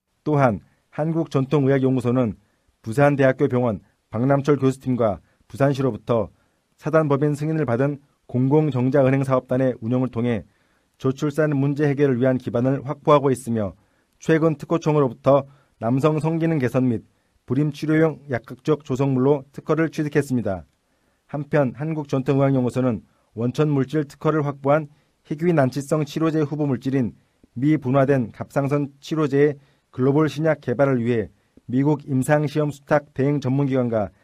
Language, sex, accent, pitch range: Korean, male, native, 125-150 Hz